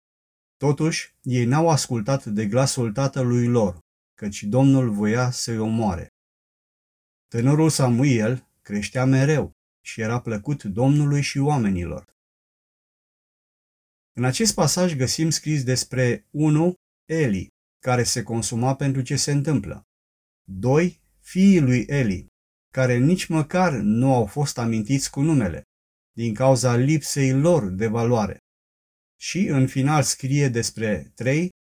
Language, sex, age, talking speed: Romanian, male, 30-49, 120 wpm